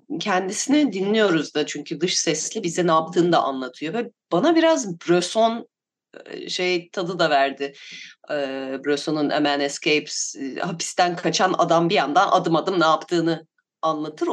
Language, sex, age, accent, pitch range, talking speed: Turkish, female, 30-49, native, 160-230 Hz, 135 wpm